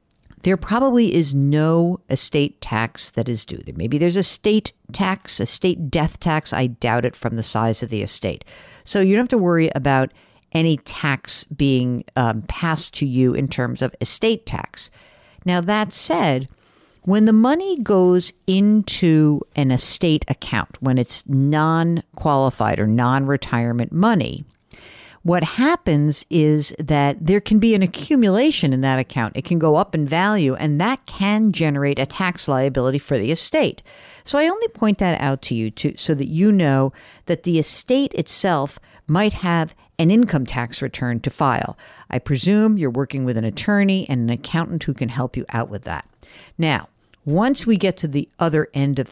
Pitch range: 130-190 Hz